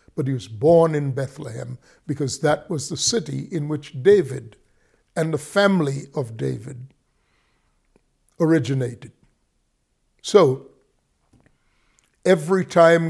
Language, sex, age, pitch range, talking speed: English, male, 60-79, 135-170 Hz, 105 wpm